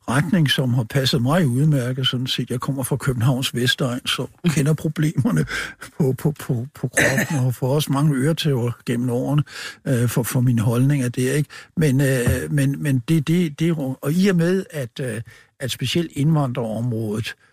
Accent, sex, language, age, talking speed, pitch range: native, male, Danish, 60-79, 180 wpm, 125-150 Hz